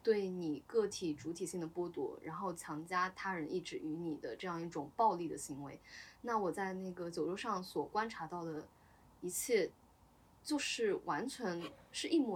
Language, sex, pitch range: Chinese, female, 170-255 Hz